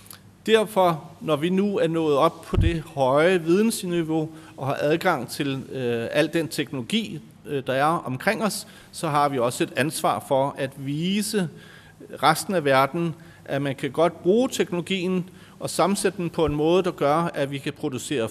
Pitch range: 140-180 Hz